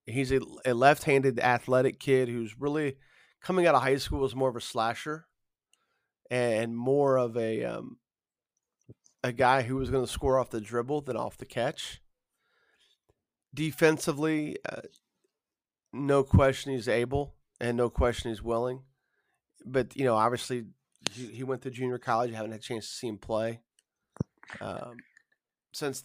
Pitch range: 115-140 Hz